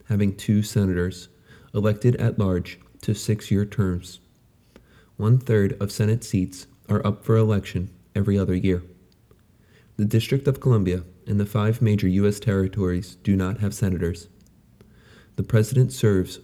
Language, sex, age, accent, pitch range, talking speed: English, male, 30-49, American, 95-110 Hz, 135 wpm